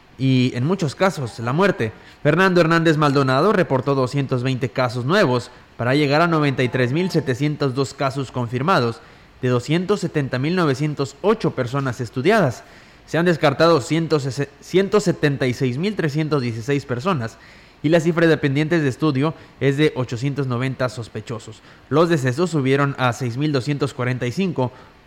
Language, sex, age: Spanish, male, 20-39